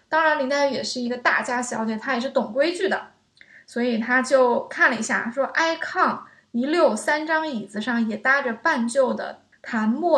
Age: 20-39